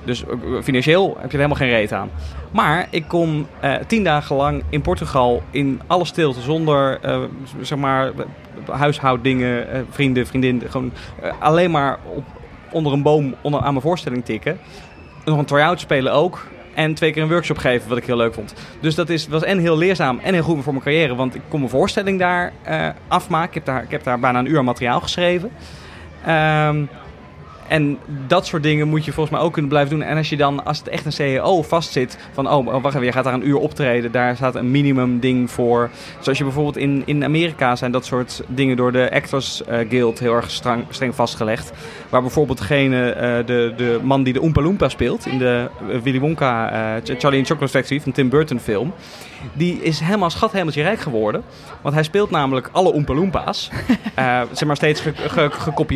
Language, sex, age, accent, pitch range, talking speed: Dutch, male, 20-39, Dutch, 125-155 Hz, 205 wpm